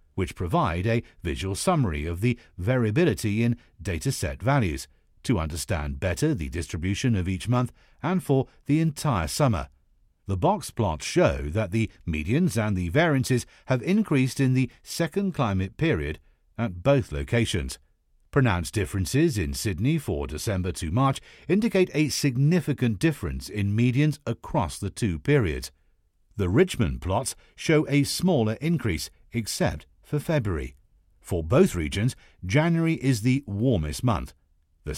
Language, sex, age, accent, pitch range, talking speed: English, male, 50-69, British, 90-145 Hz, 140 wpm